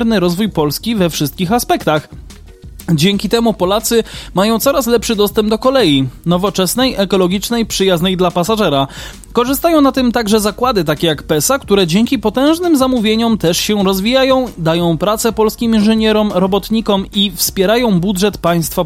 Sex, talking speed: male, 135 wpm